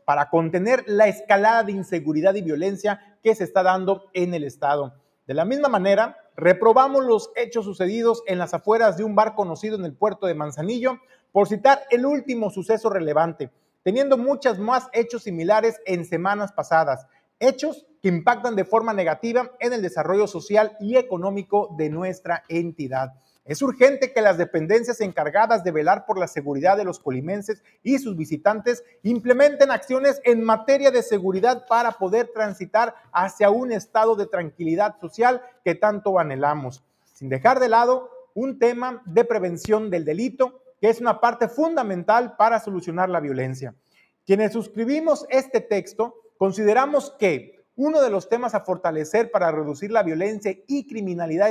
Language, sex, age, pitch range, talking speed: Spanish, male, 40-59, 180-240 Hz, 160 wpm